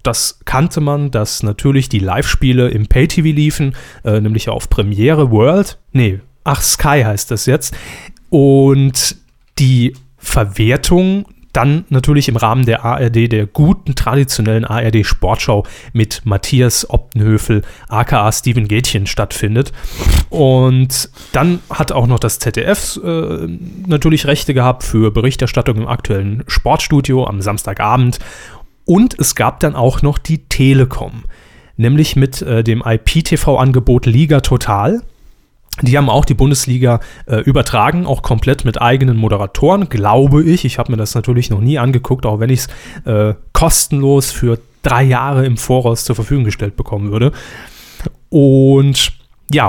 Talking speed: 140 wpm